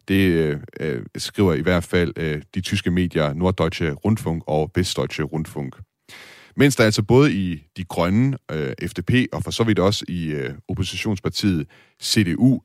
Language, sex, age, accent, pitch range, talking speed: Danish, male, 30-49, native, 80-105 Hz, 160 wpm